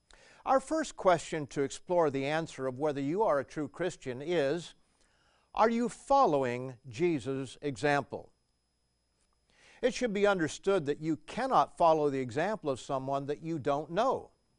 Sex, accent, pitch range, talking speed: male, American, 140-195 Hz, 150 wpm